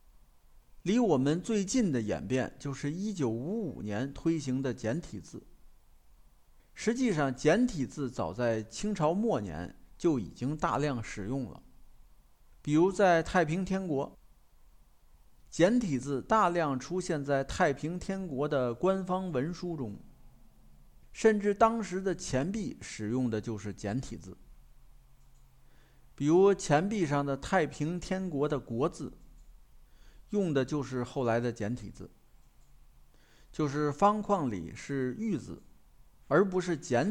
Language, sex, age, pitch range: Chinese, male, 50-69, 110-180 Hz